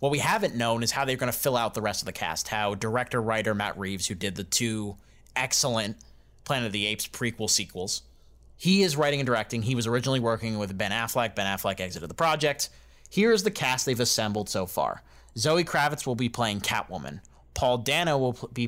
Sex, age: male, 30-49